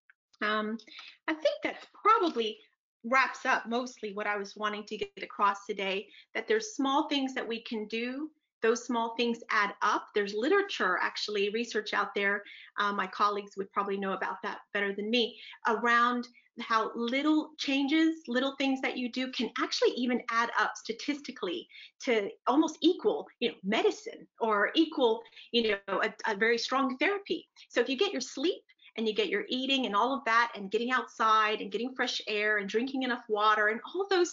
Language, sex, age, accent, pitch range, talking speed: English, female, 30-49, American, 205-265 Hz, 185 wpm